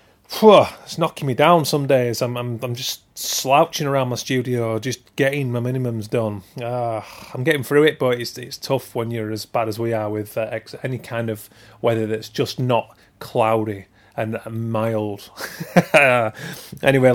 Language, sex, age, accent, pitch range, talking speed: English, male, 30-49, British, 115-140 Hz, 175 wpm